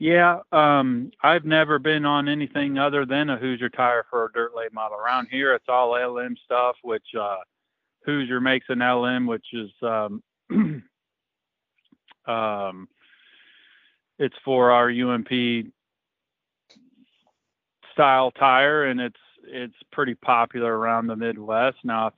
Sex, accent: male, American